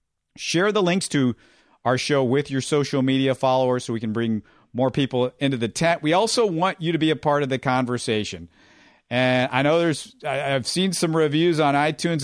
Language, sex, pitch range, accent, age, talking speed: English, male, 125-175 Hz, American, 50-69, 200 wpm